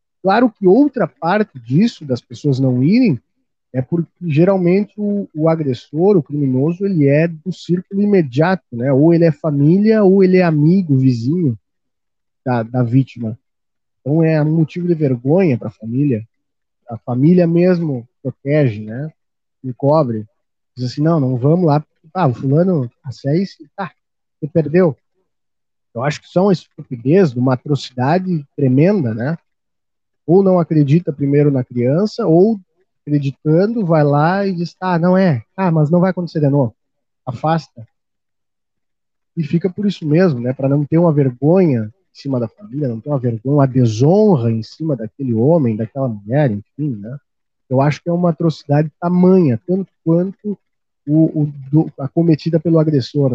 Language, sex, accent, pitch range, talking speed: Portuguese, male, Brazilian, 130-175 Hz, 160 wpm